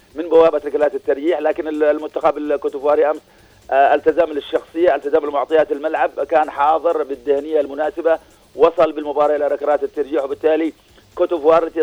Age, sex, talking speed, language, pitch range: 40-59, male, 115 wpm, Arabic, 145-165 Hz